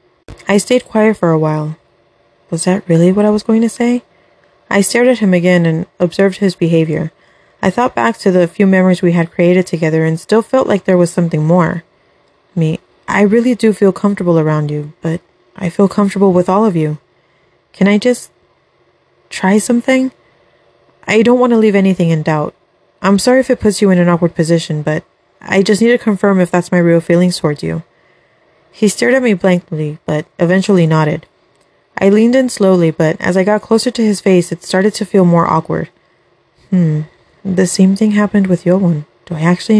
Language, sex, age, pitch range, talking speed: English, female, 20-39, 165-210 Hz, 195 wpm